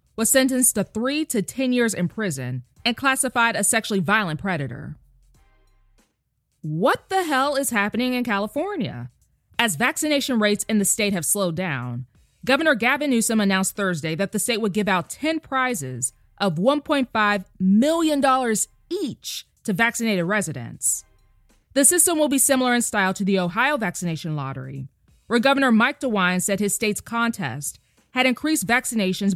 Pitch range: 170-255 Hz